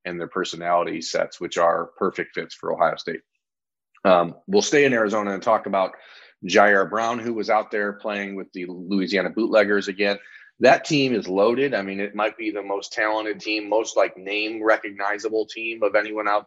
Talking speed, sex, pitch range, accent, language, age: 190 wpm, male, 100-115 Hz, American, English, 30-49